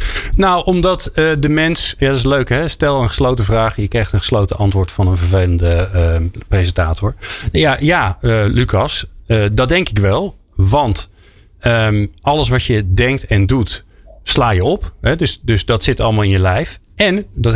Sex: male